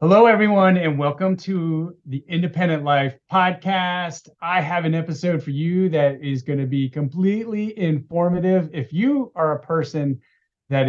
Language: English